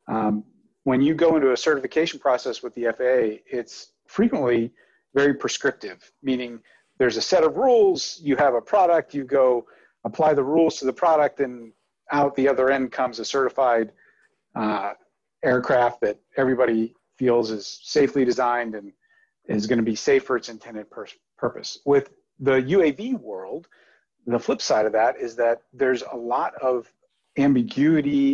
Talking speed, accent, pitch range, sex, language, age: 160 wpm, American, 120-155 Hz, male, English, 40-59